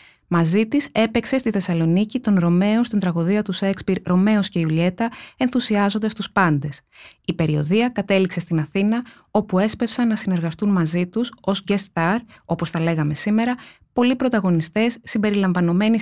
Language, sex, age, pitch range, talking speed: Greek, female, 20-39, 175-225 Hz, 140 wpm